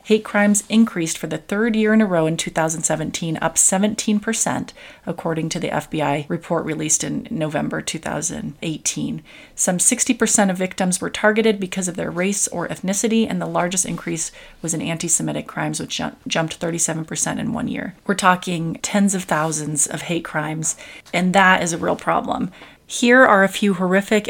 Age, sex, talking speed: 30-49, female, 165 wpm